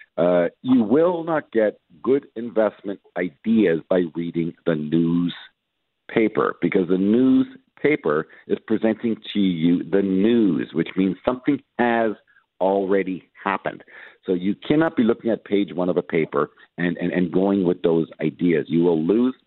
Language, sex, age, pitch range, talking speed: English, male, 50-69, 95-135 Hz, 150 wpm